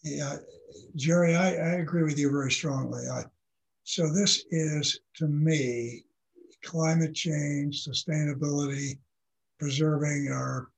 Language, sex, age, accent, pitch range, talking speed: English, male, 60-79, American, 140-165 Hz, 110 wpm